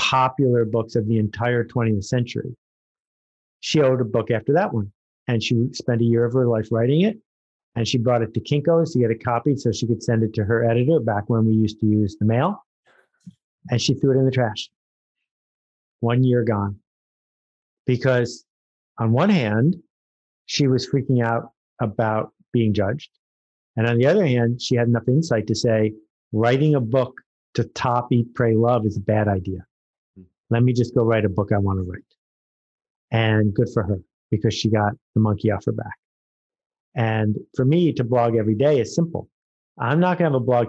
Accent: American